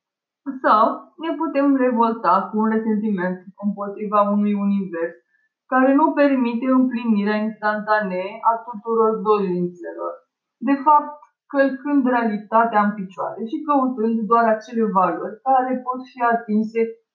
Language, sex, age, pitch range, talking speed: English, female, 20-39, 210-260 Hz, 115 wpm